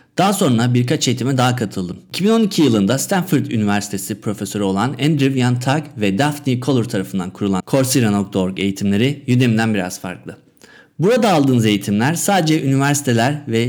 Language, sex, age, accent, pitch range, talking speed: Turkish, male, 50-69, native, 105-145 Hz, 130 wpm